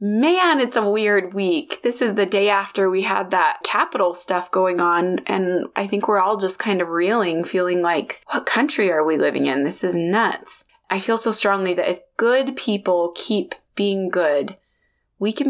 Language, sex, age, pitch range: English, female, 20-39, 175-210 Hz